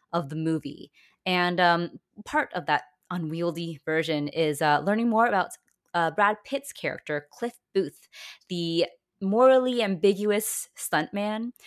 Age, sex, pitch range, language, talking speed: 20-39, female, 155-205 Hz, English, 130 wpm